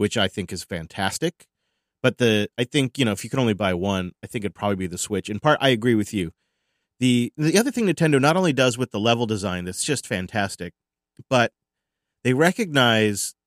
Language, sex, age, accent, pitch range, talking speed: English, male, 30-49, American, 95-130 Hz, 215 wpm